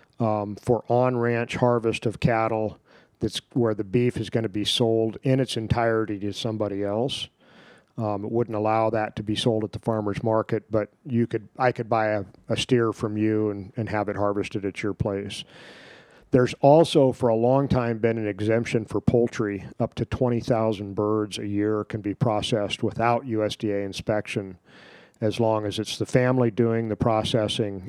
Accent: American